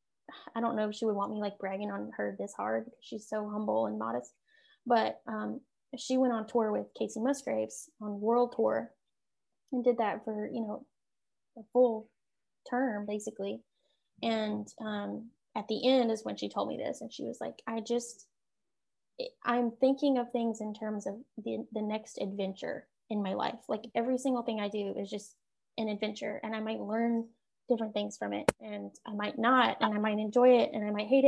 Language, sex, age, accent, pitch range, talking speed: English, female, 20-39, American, 210-245 Hz, 200 wpm